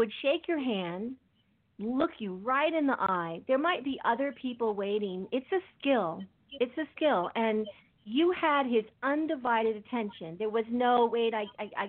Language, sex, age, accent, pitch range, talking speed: English, female, 50-69, American, 185-245 Hz, 165 wpm